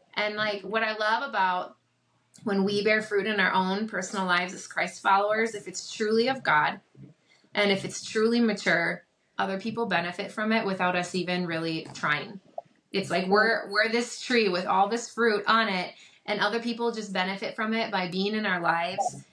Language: English